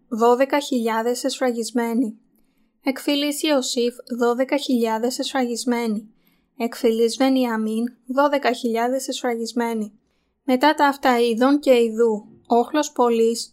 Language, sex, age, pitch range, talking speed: Greek, female, 20-39, 230-260 Hz, 90 wpm